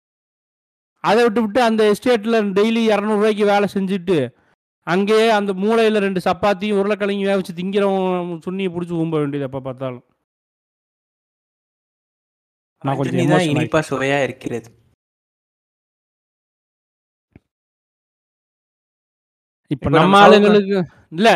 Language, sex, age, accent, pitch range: Tamil, male, 30-49, native, 165-215 Hz